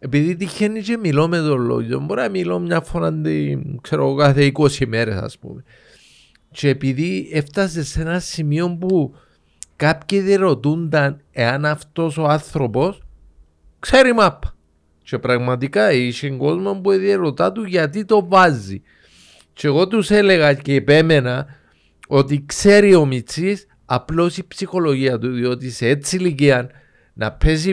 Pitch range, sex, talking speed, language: 135-200 Hz, male, 135 wpm, Greek